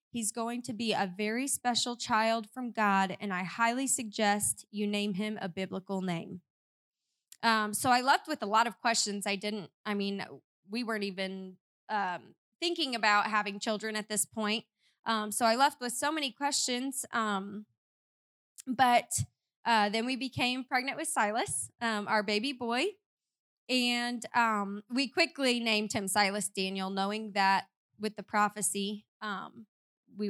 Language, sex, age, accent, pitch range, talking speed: English, female, 20-39, American, 205-245 Hz, 155 wpm